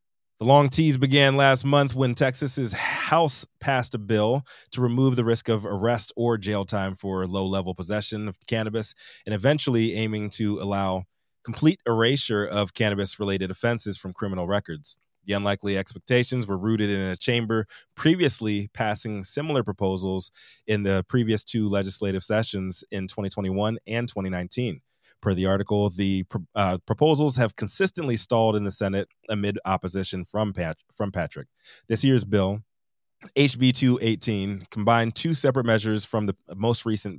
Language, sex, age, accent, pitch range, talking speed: English, male, 30-49, American, 95-120 Hz, 150 wpm